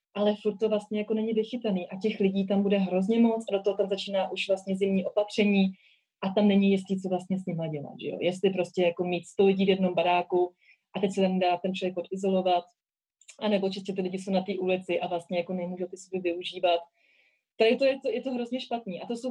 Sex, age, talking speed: female, 30-49, 230 wpm